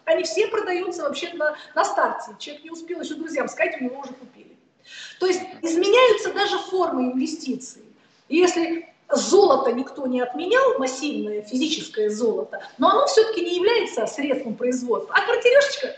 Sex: female